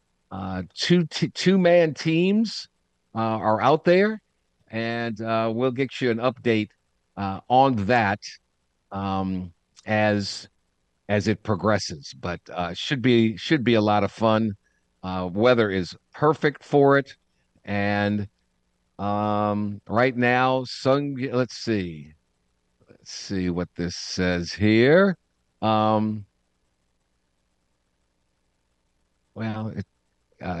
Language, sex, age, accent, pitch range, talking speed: English, male, 50-69, American, 95-135 Hz, 110 wpm